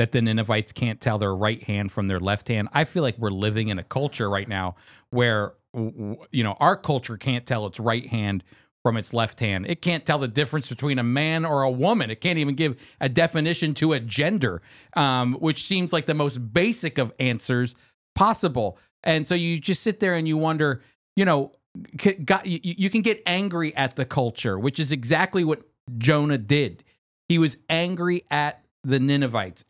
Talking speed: 195 wpm